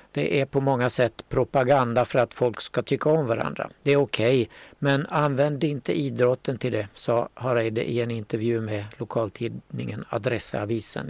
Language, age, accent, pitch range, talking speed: Swedish, 60-79, native, 115-140 Hz, 170 wpm